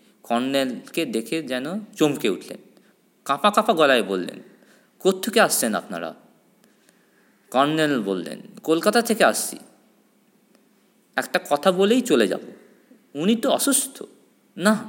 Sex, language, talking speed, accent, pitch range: male, Bengali, 105 wpm, native, 175-215 Hz